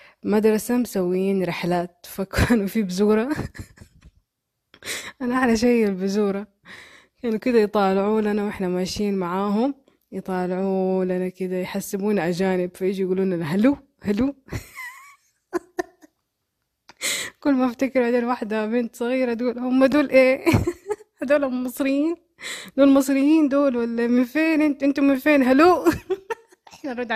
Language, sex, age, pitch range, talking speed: Arabic, female, 20-39, 195-260 Hz, 120 wpm